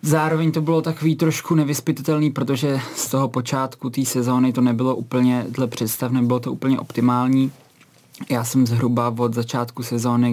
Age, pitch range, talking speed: 20-39, 115-130 Hz, 155 wpm